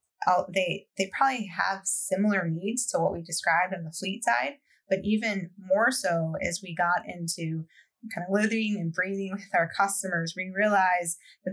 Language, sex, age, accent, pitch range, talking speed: English, female, 20-39, American, 180-210 Hz, 175 wpm